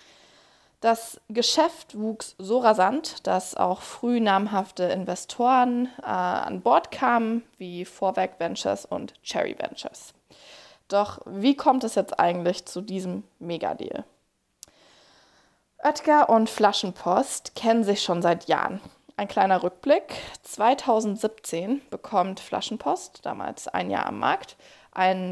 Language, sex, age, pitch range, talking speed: German, female, 20-39, 185-245 Hz, 115 wpm